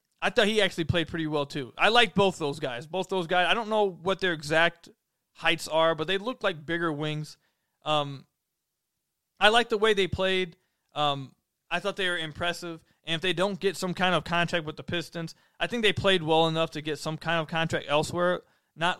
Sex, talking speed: male, 220 wpm